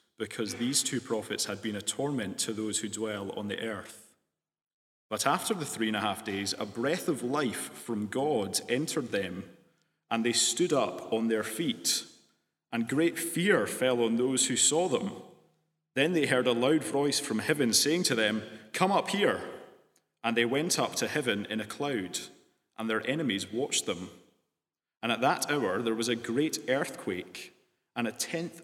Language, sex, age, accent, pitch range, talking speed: English, male, 30-49, British, 110-130 Hz, 180 wpm